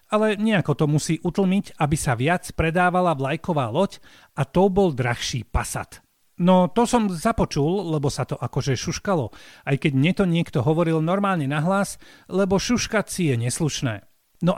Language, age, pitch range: Slovak, 40-59, 145-195 Hz